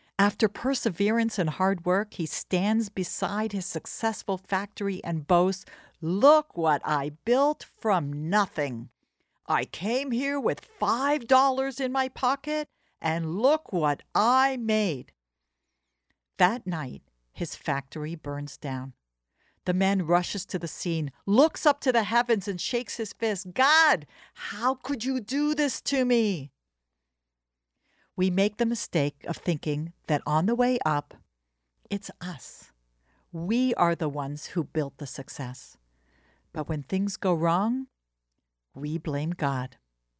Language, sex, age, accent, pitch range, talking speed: English, female, 60-79, American, 140-225 Hz, 135 wpm